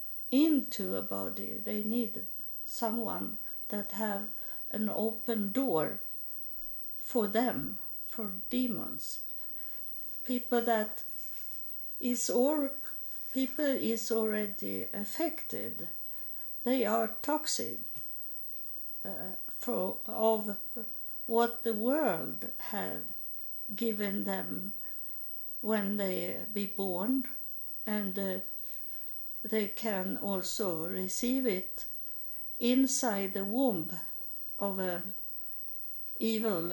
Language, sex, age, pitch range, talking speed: English, female, 60-79, 200-245 Hz, 85 wpm